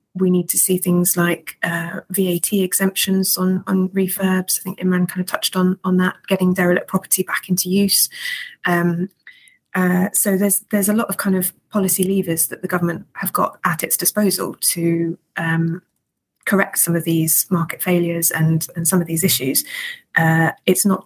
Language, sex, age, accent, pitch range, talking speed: English, female, 20-39, British, 170-190 Hz, 180 wpm